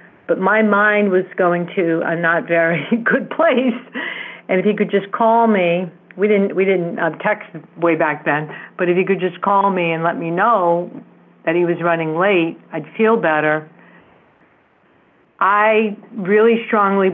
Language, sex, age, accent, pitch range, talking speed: English, female, 60-79, American, 170-210 Hz, 170 wpm